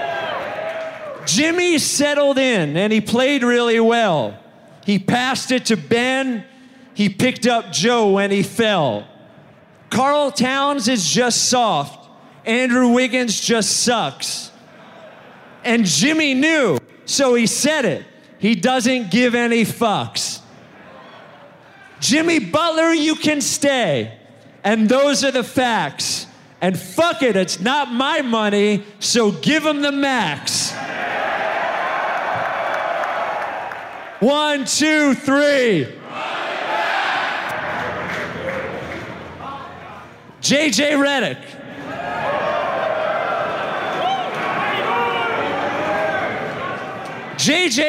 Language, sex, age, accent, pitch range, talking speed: English, male, 40-59, American, 215-280 Hz, 85 wpm